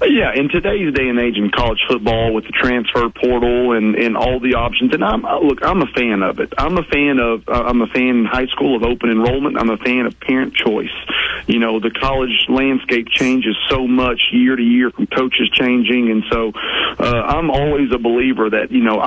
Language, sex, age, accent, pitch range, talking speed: English, male, 40-59, American, 120-135 Hz, 220 wpm